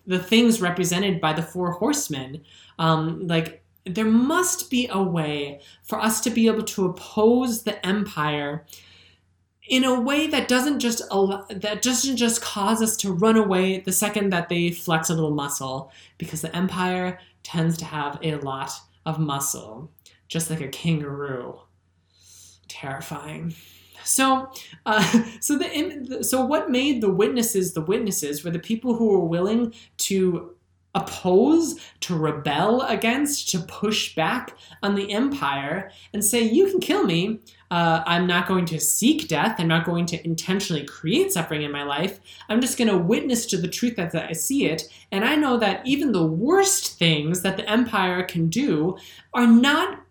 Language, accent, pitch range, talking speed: English, American, 160-235 Hz, 165 wpm